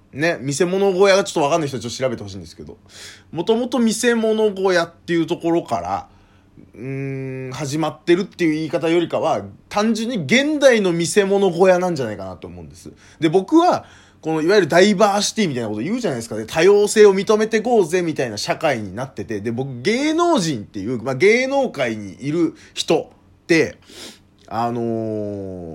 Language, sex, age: Japanese, male, 20-39